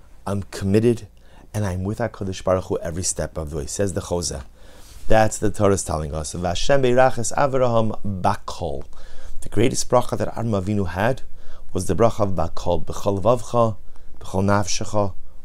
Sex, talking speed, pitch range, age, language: male, 140 wpm, 85-110 Hz, 30-49, English